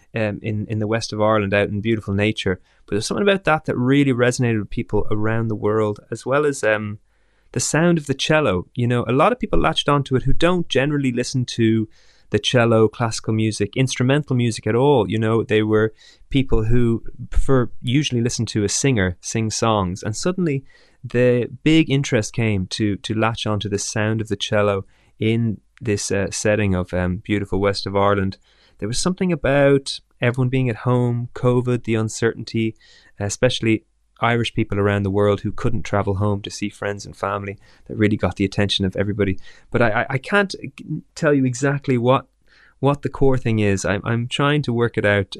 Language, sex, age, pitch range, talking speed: English, male, 20-39, 105-130 Hz, 195 wpm